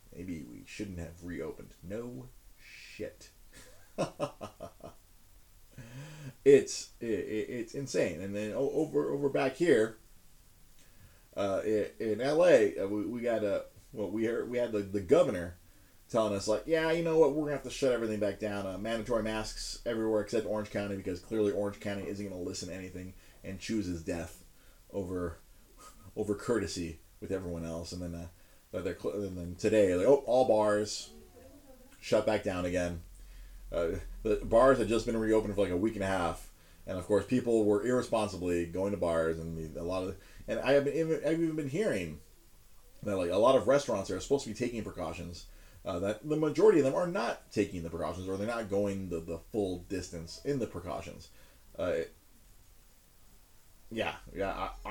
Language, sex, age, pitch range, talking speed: English, male, 30-49, 85-115 Hz, 180 wpm